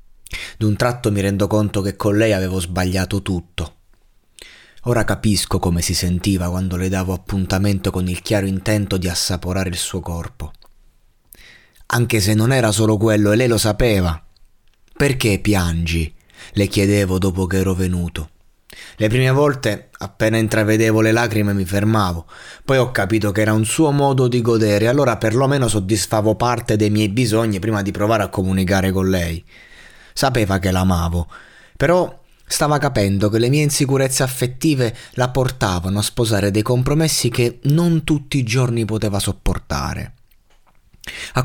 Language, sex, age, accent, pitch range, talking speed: Italian, male, 30-49, native, 95-125 Hz, 150 wpm